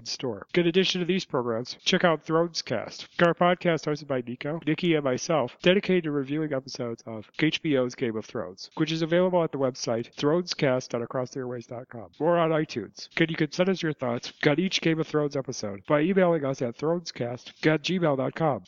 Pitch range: 125-165 Hz